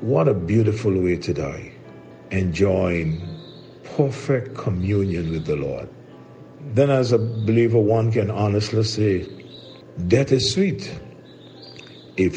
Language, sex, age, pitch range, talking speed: English, male, 50-69, 85-115 Hz, 115 wpm